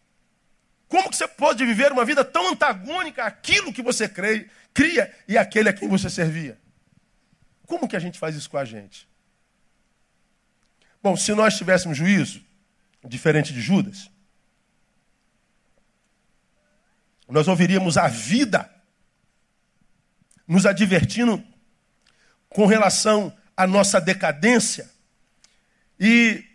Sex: male